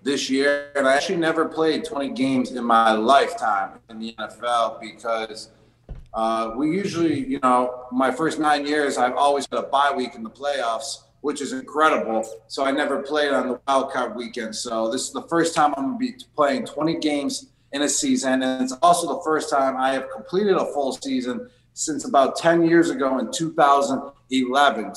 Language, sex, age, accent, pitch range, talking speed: English, male, 30-49, American, 125-145 Hz, 190 wpm